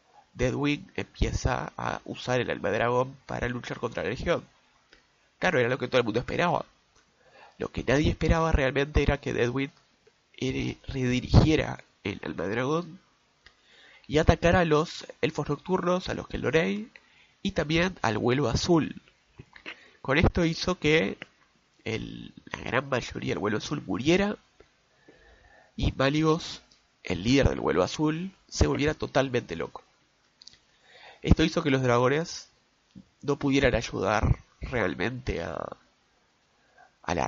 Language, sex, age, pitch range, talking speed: Spanish, male, 20-39, 120-160 Hz, 130 wpm